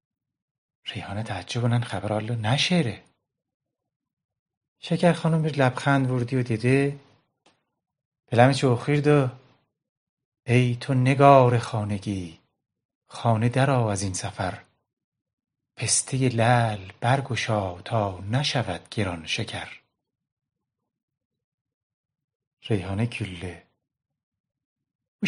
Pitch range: 110-145 Hz